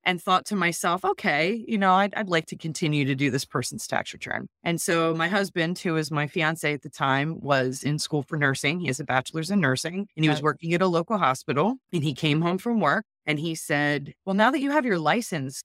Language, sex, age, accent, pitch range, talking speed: English, female, 30-49, American, 145-175 Hz, 245 wpm